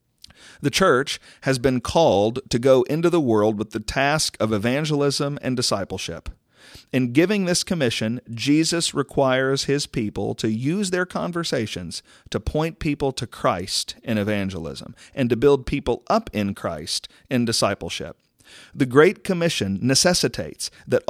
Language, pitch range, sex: English, 105-145 Hz, male